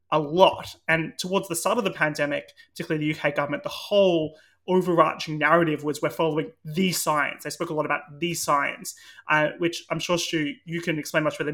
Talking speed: 205 wpm